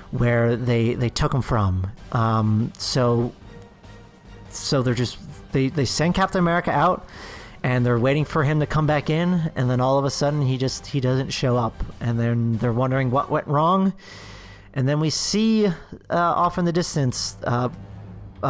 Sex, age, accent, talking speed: male, 40-59, American, 180 wpm